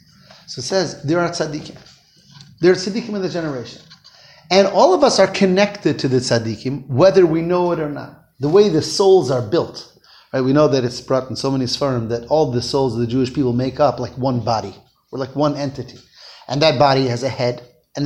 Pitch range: 135-195 Hz